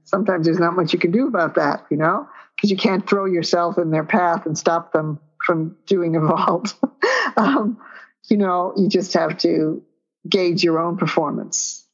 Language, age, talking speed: English, 50-69, 185 wpm